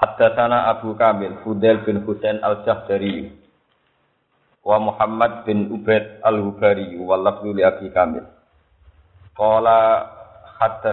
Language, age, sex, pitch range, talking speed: Indonesian, 50-69, male, 100-125 Hz, 110 wpm